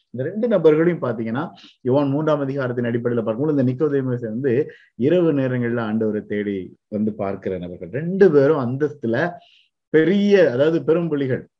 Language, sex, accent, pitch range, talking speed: Tamil, male, native, 110-140 Hz, 130 wpm